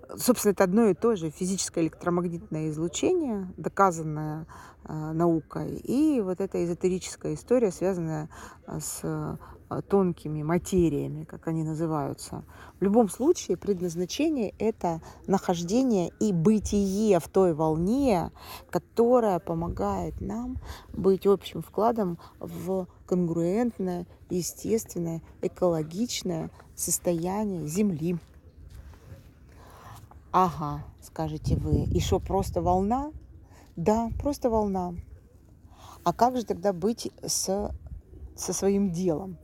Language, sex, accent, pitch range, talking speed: Russian, female, native, 160-205 Hz, 100 wpm